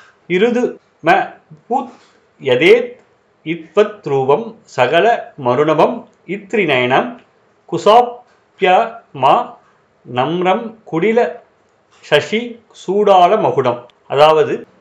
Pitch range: 160-220 Hz